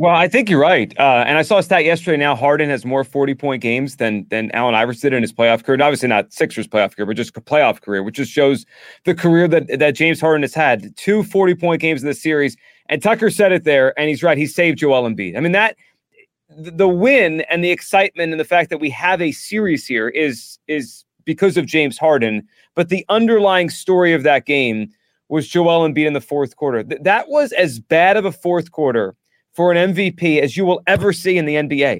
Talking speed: 235 wpm